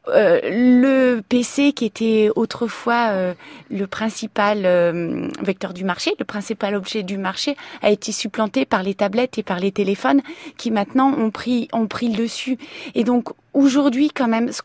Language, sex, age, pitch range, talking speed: French, female, 30-49, 210-275 Hz, 170 wpm